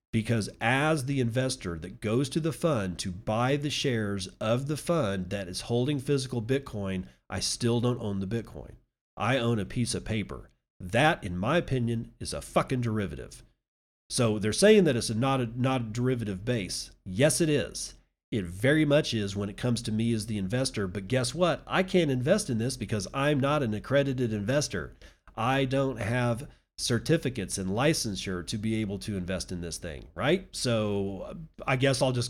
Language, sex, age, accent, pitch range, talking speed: English, male, 40-59, American, 100-135 Hz, 185 wpm